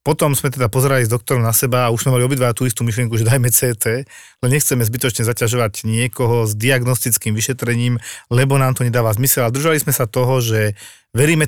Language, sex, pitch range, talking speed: Slovak, male, 115-135 Hz, 205 wpm